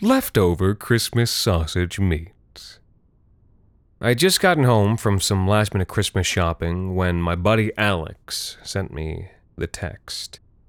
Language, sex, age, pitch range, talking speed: English, male, 30-49, 90-110 Hz, 125 wpm